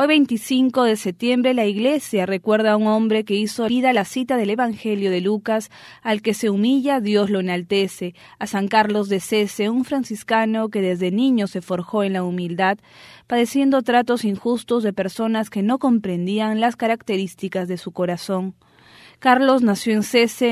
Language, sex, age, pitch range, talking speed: English, female, 20-39, 195-240 Hz, 170 wpm